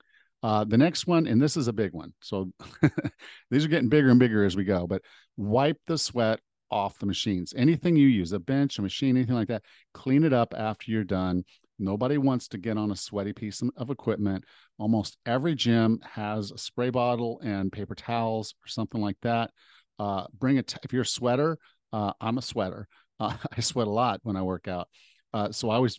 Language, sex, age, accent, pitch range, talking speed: English, male, 50-69, American, 100-125 Hz, 210 wpm